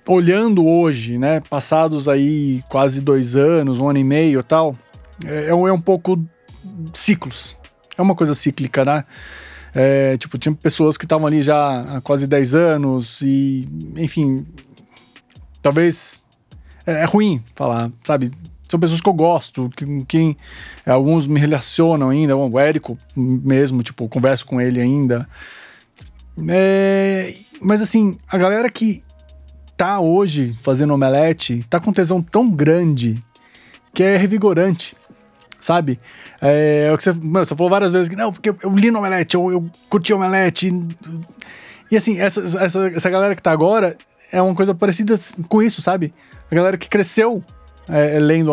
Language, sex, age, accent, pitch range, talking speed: Portuguese, male, 20-39, Brazilian, 135-185 Hz, 150 wpm